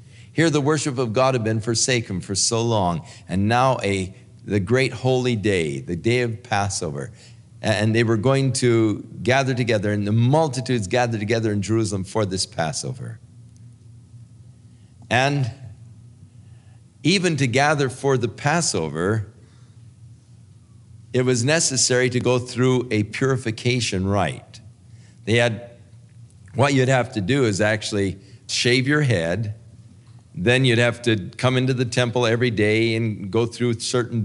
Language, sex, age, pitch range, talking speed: English, male, 50-69, 110-125 Hz, 140 wpm